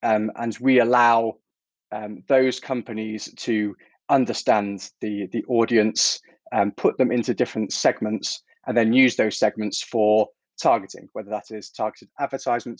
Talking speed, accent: 140 wpm, British